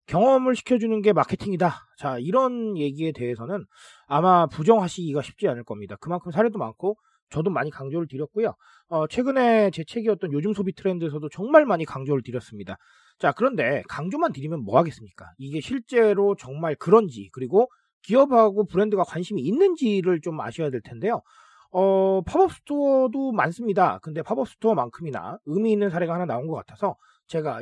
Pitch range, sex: 145-220 Hz, male